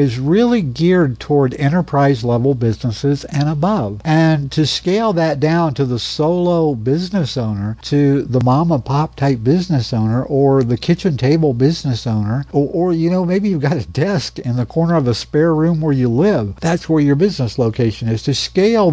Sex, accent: male, American